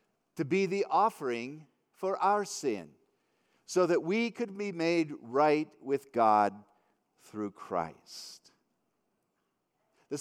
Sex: male